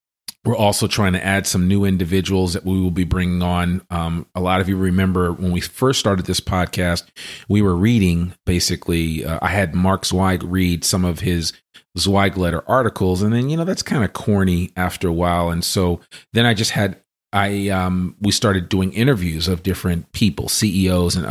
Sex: male